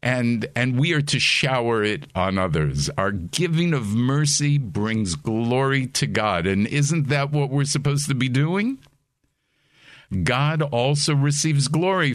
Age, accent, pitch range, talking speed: 50-69, American, 120-150 Hz, 150 wpm